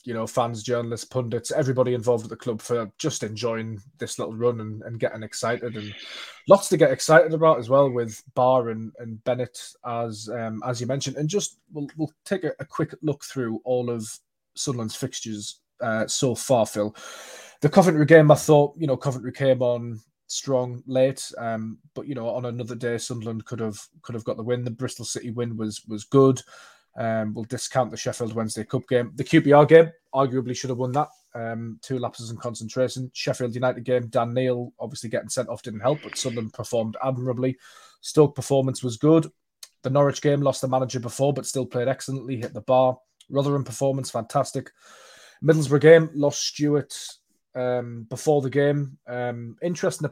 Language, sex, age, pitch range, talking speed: English, male, 20-39, 115-140 Hz, 190 wpm